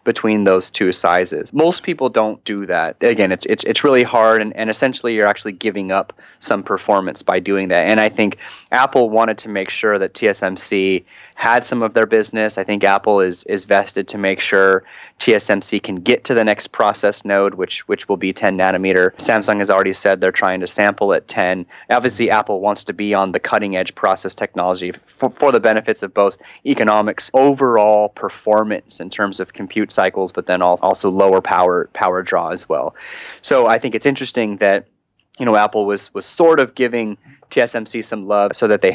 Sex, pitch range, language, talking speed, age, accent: male, 95-115 Hz, English, 200 wpm, 30-49, American